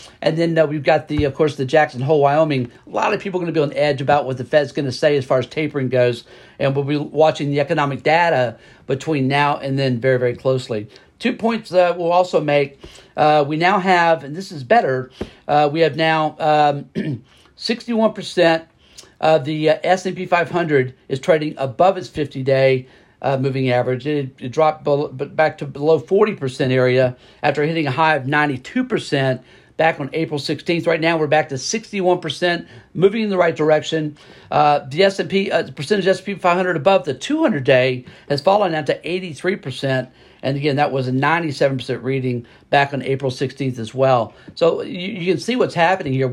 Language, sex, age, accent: English, male, 50-69, American